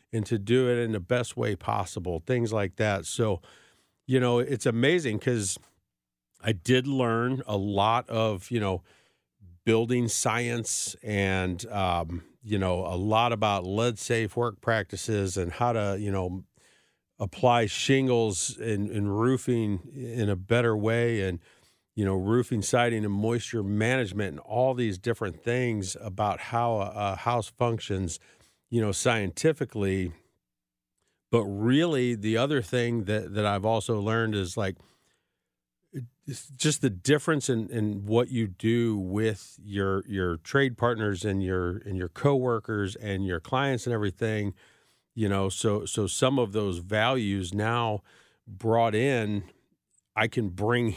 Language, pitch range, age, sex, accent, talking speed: English, 100-120 Hz, 50-69, male, American, 145 wpm